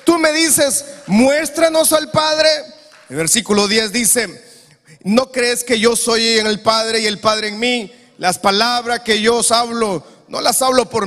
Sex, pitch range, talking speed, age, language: male, 180-235 Hz, 180 wpm, 40-59, Spanish